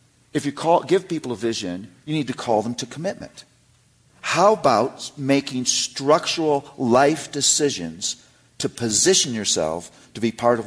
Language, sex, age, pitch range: English, male, 50-69, 105-140 Hz